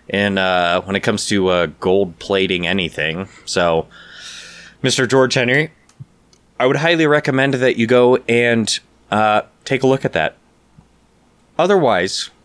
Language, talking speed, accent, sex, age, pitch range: English, 140 wpm, American, male, 20-39, 90-120 Hz